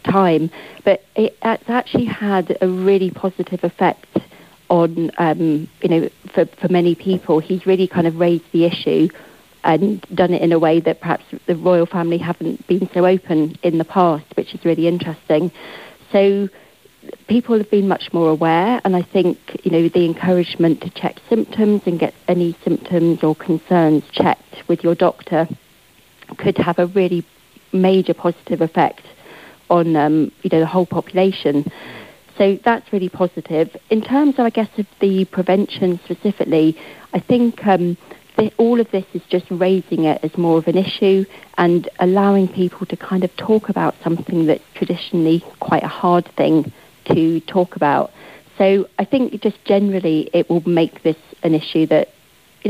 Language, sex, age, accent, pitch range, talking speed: English, female, 40-59, British, 165-195 Hz, 165 wpm